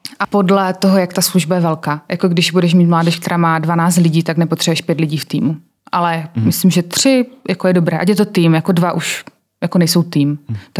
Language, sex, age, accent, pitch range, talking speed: Czech, female, 20-39, native, 160-185 Hz, 230 wpm